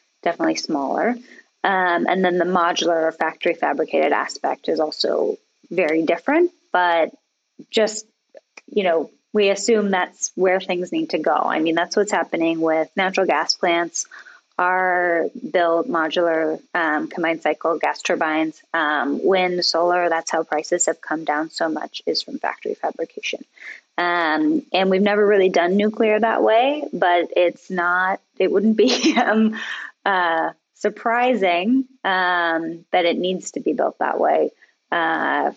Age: 20-39